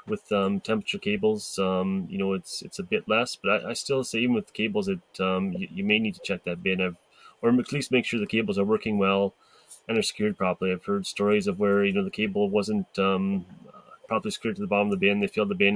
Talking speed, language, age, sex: 260 wpm, English, 20-39, male